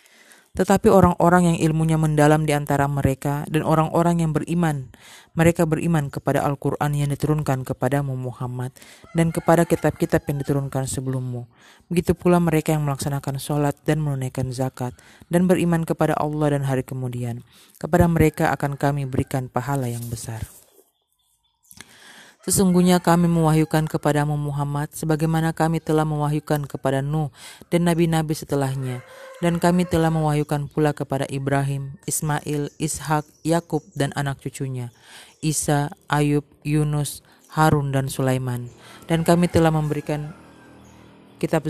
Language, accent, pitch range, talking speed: Indonesian, native, 135-160 Hz, 125 wpm